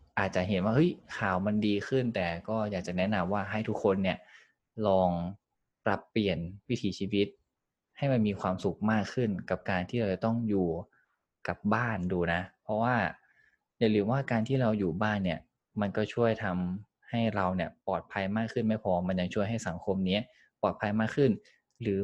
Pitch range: 90-110 Hz